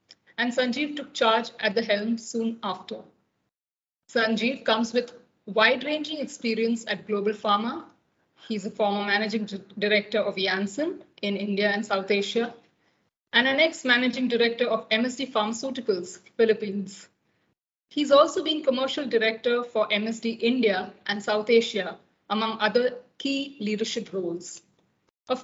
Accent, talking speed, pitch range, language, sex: Indian, 125 wpm, 210-250 Hz, English, female